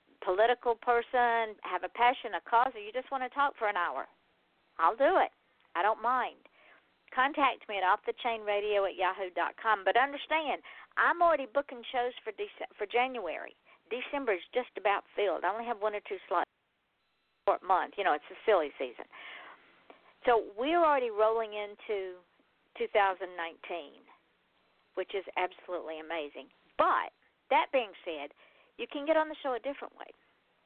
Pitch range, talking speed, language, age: 185-260 Hz, 165 wpm, English, 50-69